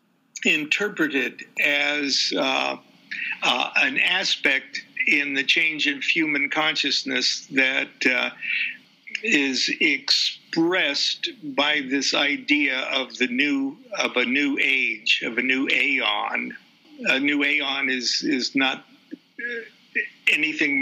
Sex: male